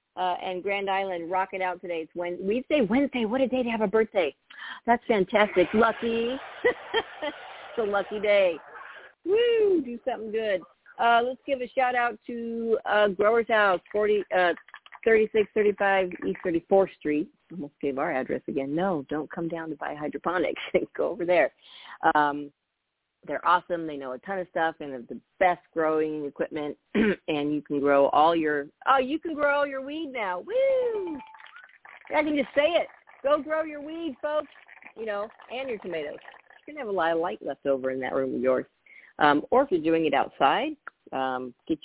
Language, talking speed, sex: English, 190 wpm, female